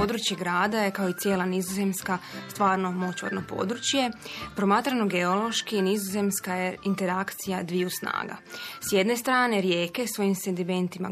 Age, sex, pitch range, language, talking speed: 20-39, female, 185-215 Hz, Croatian, 125 wpm